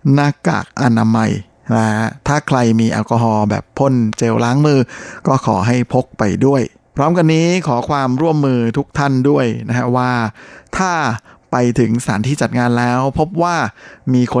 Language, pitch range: Thai, 110-135 Hz